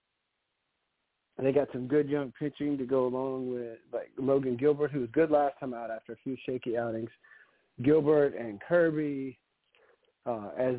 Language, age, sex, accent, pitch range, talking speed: English, 40-59, male, American, 125-160 Hz, 165 wpm